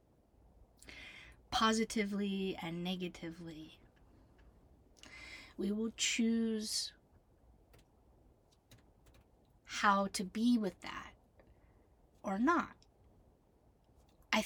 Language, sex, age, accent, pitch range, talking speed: English, female, 30-49, American, 180-210 Hz, 60 wpm